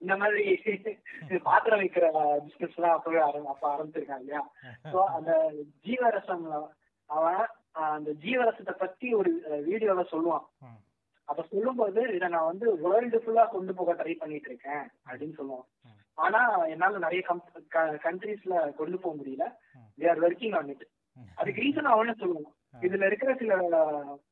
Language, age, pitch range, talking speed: Tamil, 20-39, 145-210 Hz, 60 wpm